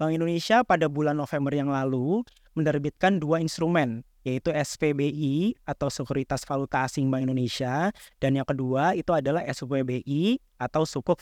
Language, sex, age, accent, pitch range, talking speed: Indonesian, male, 20-39, native, 135-165 Hz, 140 wpm